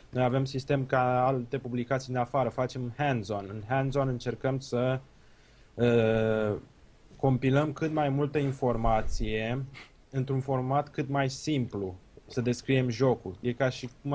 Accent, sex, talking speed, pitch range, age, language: native, male, 135 wpm, 115-135 Hz, 20-39, Romanian